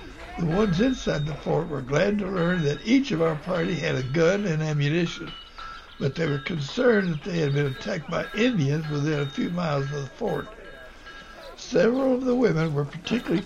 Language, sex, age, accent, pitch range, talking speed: English, male, 60-79, American, 155-205 Hz, 190 wpm